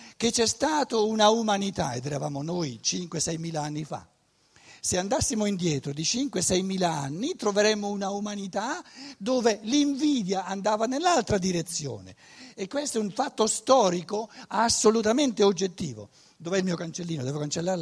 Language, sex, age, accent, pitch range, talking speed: Italian, male, 60-79, native, 160-240 Hz, 140 wpm